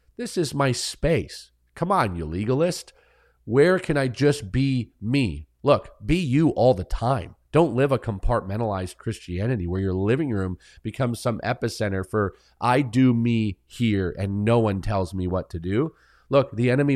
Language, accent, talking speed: English, American, 170 wpm